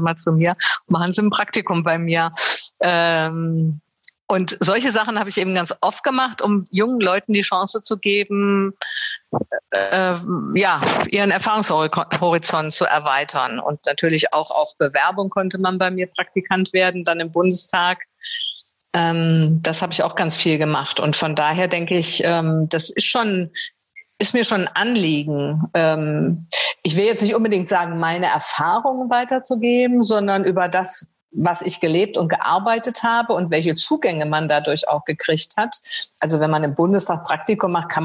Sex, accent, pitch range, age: female, German, 165-205 Hz, 50-69